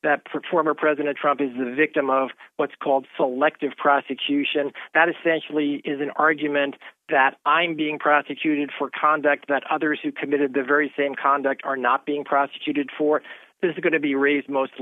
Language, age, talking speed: English, 50-69, 170 wpm